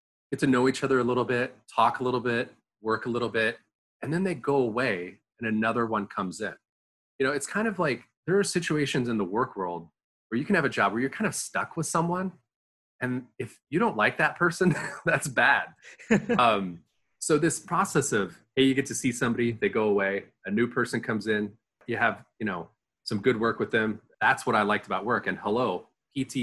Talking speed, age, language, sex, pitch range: 220 wpm, 30-49, English, male, 100-130 Hz